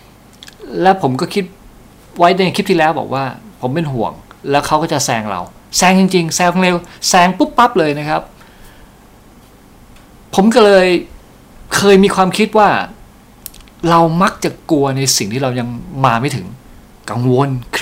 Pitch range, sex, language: 120-170 Hz, male, Thai